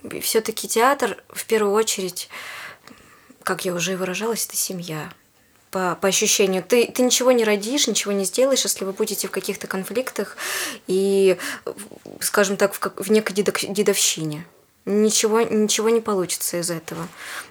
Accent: native